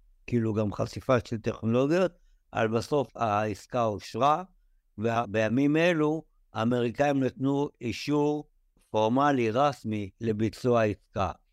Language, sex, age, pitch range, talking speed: Hebrew, male, 60-79, 110-135 Hz, 95 wpm